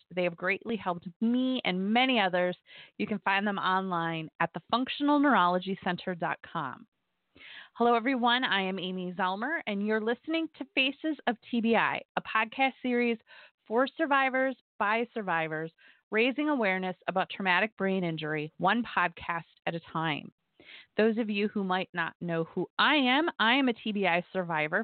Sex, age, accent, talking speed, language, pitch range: female, 30-49, American, 150 wpm, English, 185-240 Hz